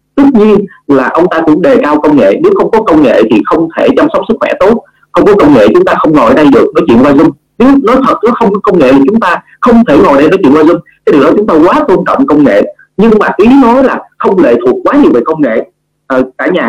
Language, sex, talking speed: Vietnamese, male, 295 wpm